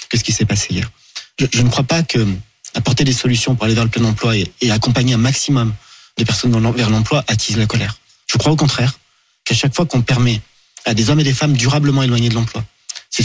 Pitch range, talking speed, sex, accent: 115-140 Hz, 235 wpm, male, French